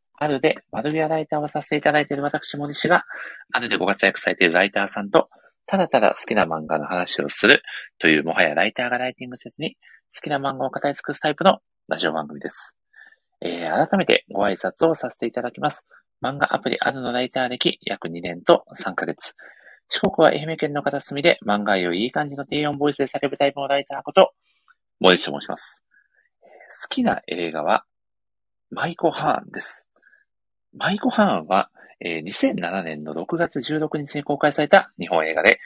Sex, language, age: male, Japanese, 40-59